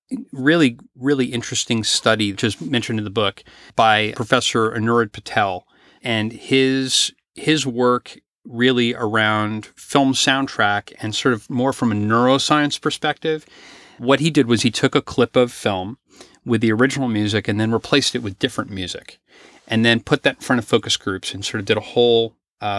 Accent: American